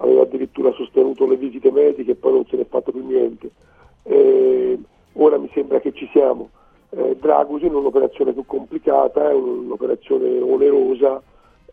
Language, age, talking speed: Italian, 40-59, 165 wpm